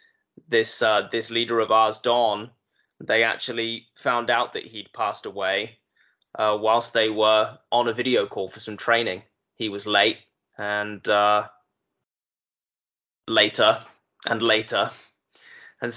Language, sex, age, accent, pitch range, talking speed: English, male, 10-29, British, 105-115 Hz, 130 wpm